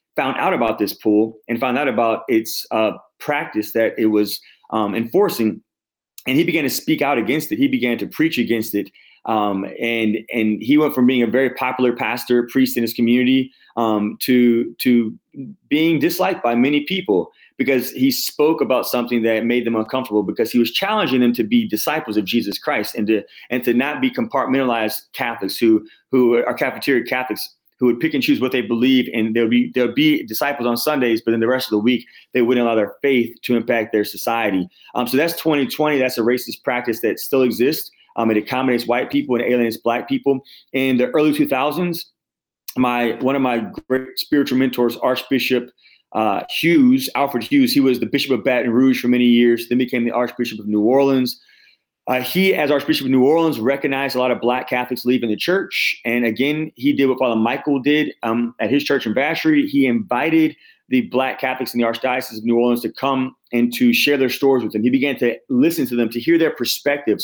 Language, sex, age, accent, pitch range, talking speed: English, male, 30-49, American, 115-140 Hz, 205 wpm